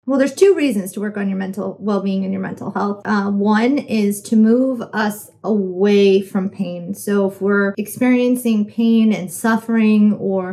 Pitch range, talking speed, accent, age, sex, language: 200-240 Hz, 175 wpm, American, 30-49, female, English